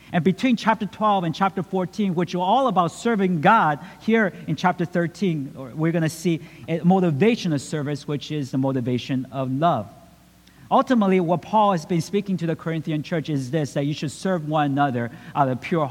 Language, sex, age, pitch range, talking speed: English, male, 50-69, 155-190 Hz, 190 wpm